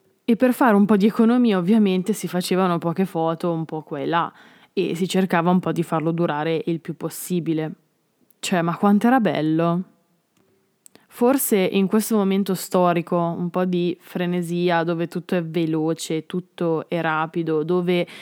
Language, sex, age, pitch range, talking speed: Italian, female, 20-39, 170-205 Hz, 165 wpm